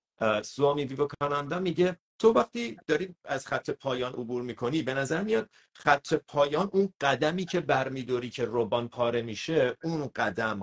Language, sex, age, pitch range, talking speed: Persian, male, 50-69, 125-175 Hz, 150 wpm